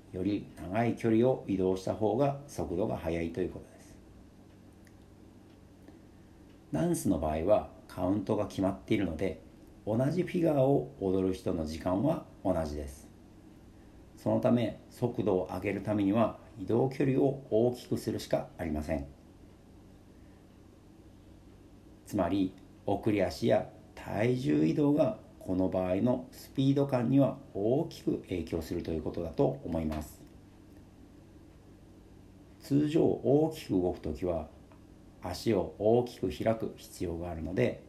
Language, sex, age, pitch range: Japanese, male, 50-69, 95-110 Hz